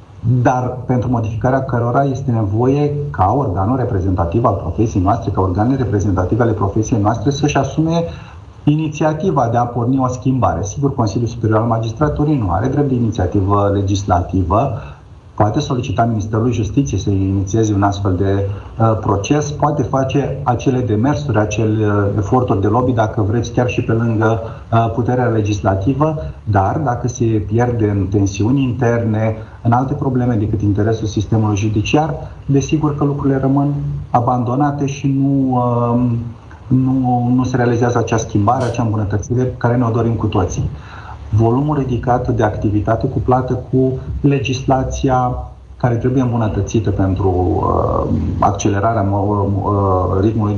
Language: Romanian